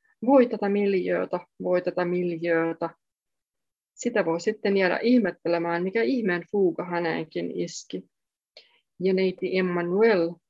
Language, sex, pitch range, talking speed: Finnish, female, 170-210 Hz, 110 wpm